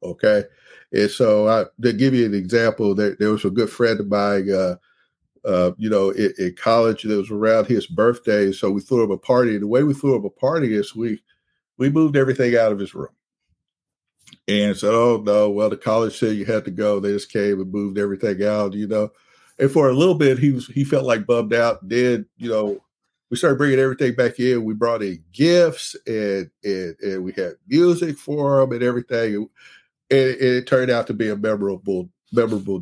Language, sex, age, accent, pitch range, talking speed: English, male, 50-69, American, 105-130 Hz, 215 wpm